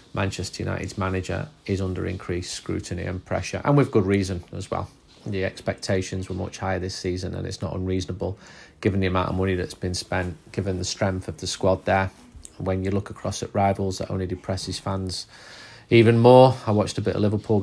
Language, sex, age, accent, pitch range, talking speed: English, male, 30-49, British, 95-110 Hz, 200 wpm